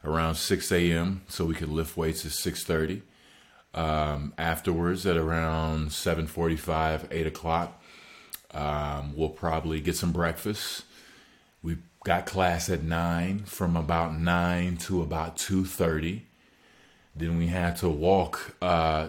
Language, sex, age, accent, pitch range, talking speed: English, male, 30-49, American, 85-95 Hz, 125 wpm